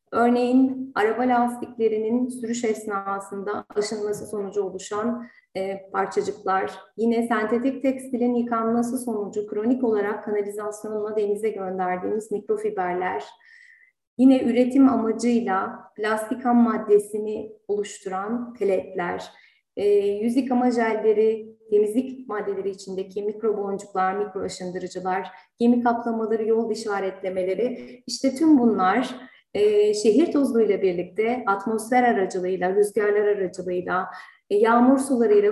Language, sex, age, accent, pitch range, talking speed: Turkish, female, 30-49, native, 205-250 Hz, 95 wpm